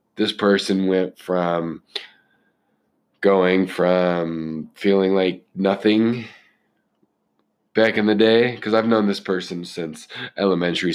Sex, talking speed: male, 110 wpm